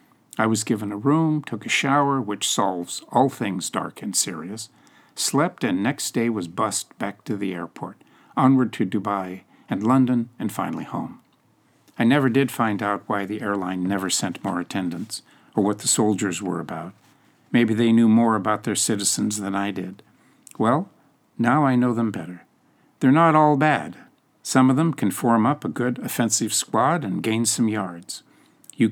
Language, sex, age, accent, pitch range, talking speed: English, male, 50-69, American, 100-125 Hz, 180 wpm